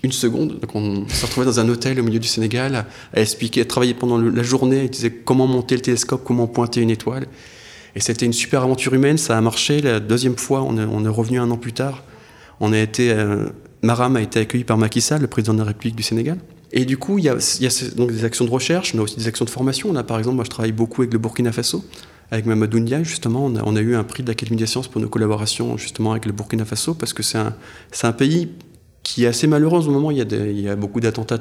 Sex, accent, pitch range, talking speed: male, French, 115-130 Hz, 275 wpm